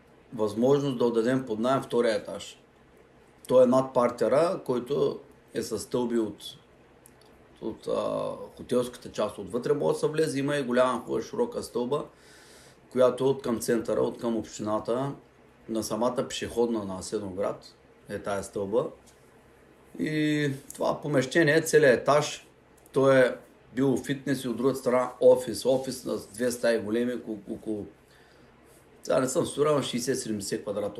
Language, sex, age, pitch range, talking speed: Bulgarian, male, 30-49, 110-135 Hz, 145 wpm